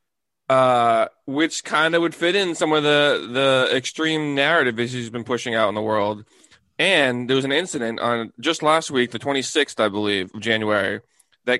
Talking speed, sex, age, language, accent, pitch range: 195 wpm, male, 20-39, English, American, 115-140 Hz